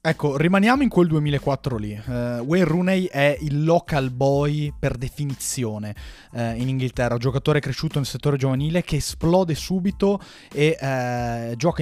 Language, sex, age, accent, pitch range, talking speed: Italian, male, 20-39, native, 125-165 Hz, 145 wpm